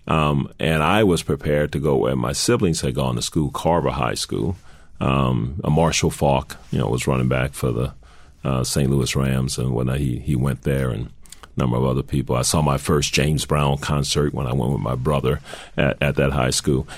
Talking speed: 220 wpm